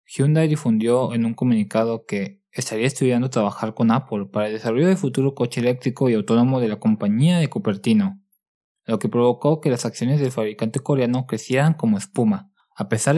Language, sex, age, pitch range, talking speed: Spanish, male, 20-39, 110-140 Hz, 180 wpm